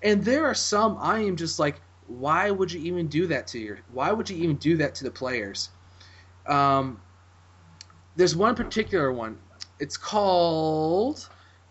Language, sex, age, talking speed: English, male, 20-39, 175 wpm